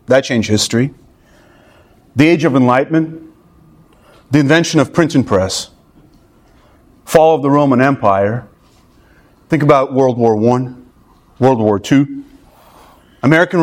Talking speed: 120 wpm